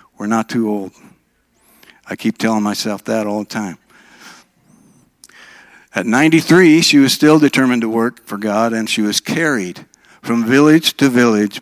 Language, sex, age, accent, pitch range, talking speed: English, male, 60-79, American, 100-120 Hz, 155 wpm